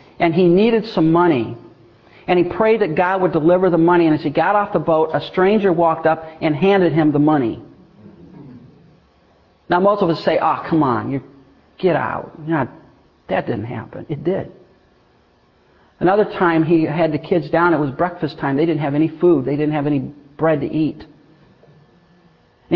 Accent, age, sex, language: American, 50-69, male, English